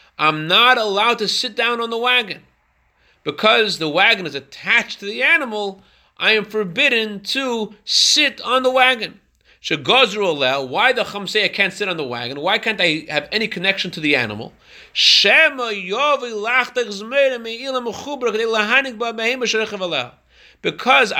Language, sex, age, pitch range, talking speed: English, male, 30-49, 180-240 Hz, 125 wpm